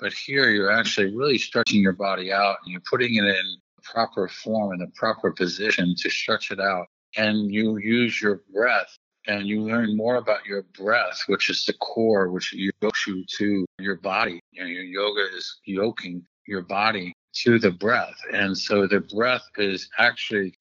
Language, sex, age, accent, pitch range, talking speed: English, male, 50-69, American, 95-105 Hz, 185 wpm